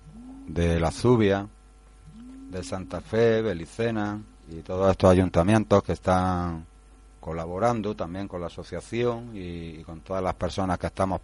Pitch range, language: 85-95 Hz, Spanish